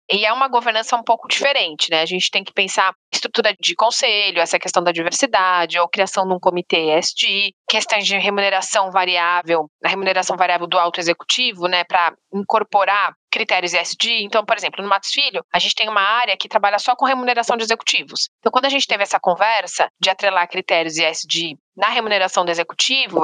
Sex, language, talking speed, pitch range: female, Portuguese, 190 wpm, 185-255 Hz